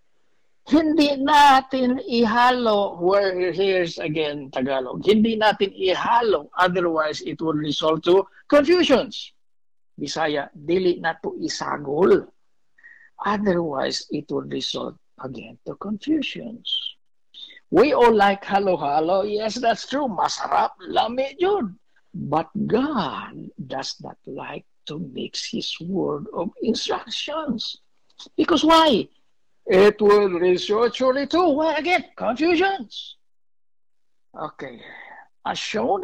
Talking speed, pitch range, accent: 100 wpm, 165-275 Hz, Filipino